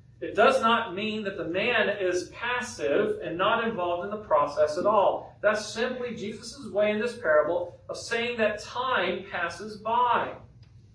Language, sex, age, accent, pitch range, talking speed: English, male, 40-59, American, 155-245 Hz, 165 wpm